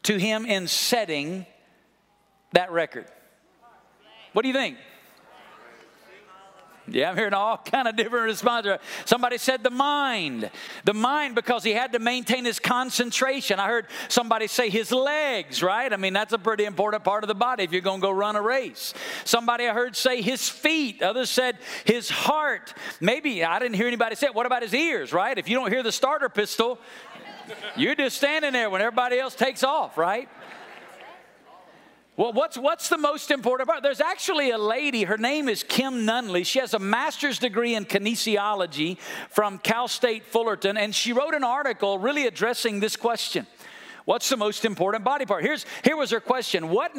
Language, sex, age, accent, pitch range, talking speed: English, male, 50-69, American, 210-255 Hz, 185 wpm